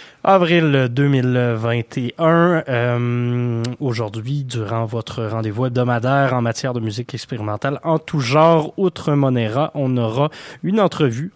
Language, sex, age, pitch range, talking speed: French, male, 20-39, 115-140 Hz, 115 wpm